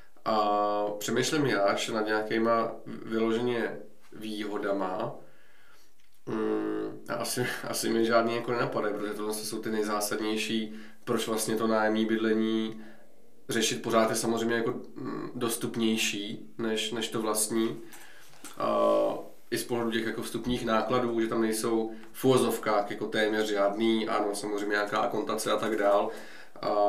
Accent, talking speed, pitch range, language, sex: native, 125 wpm, 105-120 Hz, Czech, male